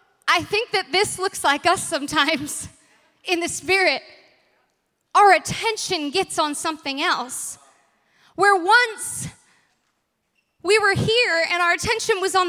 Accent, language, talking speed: American, English, 130 wpm